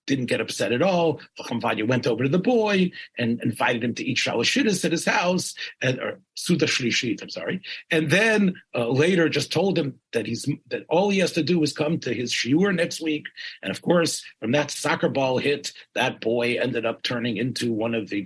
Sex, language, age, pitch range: male, English, 40-59, 120-170 Hz